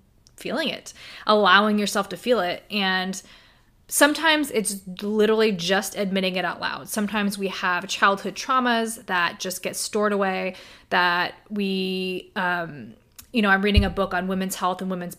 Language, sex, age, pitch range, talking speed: English, female, 20-39, 185-220 Hz, 160 wpm